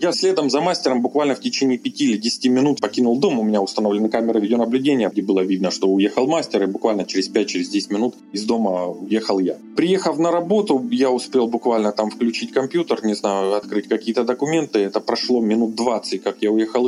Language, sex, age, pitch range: Russian, male, 20-39, 100-130 Hz